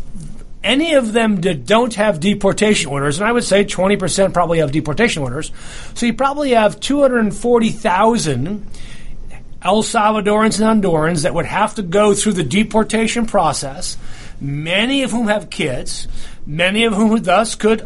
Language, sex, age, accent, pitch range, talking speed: English, male, 40-59, American, 170-225 Hz, 150 wpm